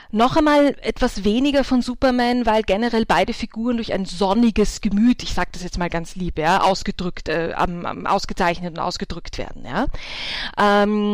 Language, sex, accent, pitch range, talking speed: German, female, German, 205-255 Hz, 170 wpm